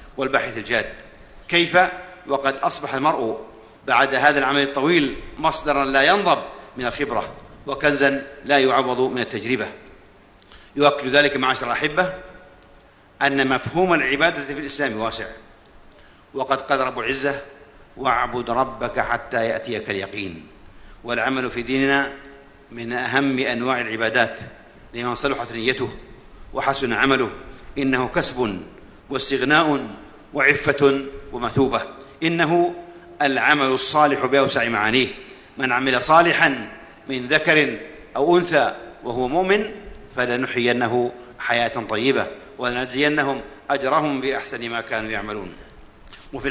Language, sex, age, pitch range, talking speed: Arabic, male, 50-69, 125-145 Hz, 105 wpm